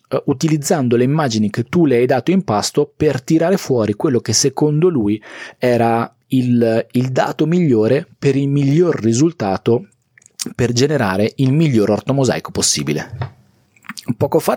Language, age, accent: Italian, 40-59, native